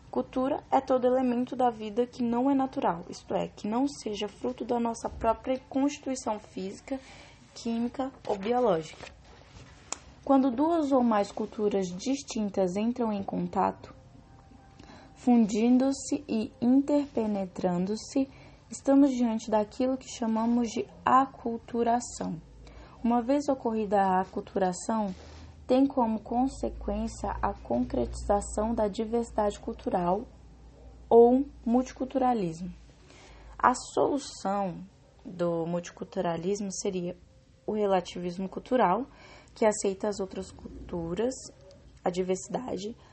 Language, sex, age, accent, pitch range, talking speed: Portuguese, female, 10-29, Brazilian, 190-250 Hz, 100 wpm